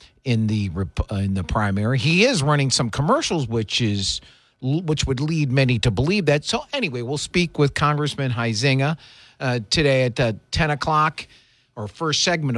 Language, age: English, 50-69